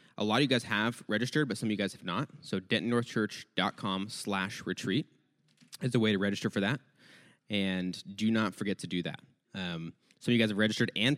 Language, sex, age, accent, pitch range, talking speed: English, male, 20-39, American, 95-115 Hz, 215 wpm